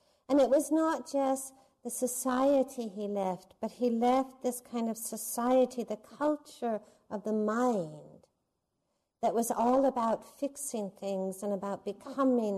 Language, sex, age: English, female, 50-69